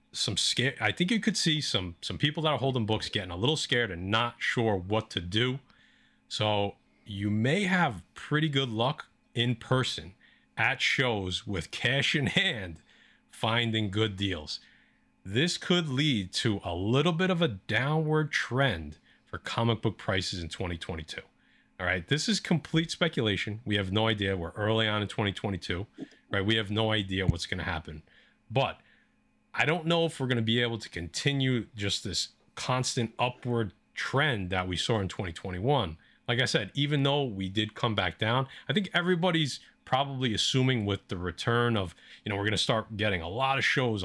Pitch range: 95-135 Hz